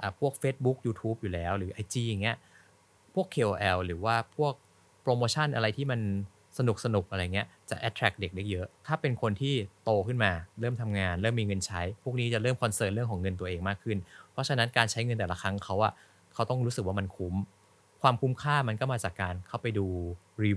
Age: 20-39